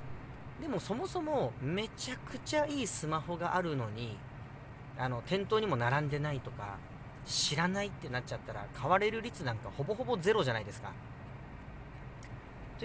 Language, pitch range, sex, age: Japanese, 125-170 Hz, male, 40-59